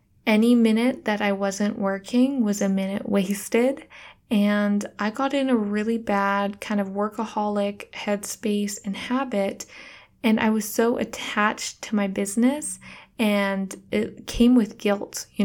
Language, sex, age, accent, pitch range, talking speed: English, female, 20-39, American, 200-230 Hz, 145 wpm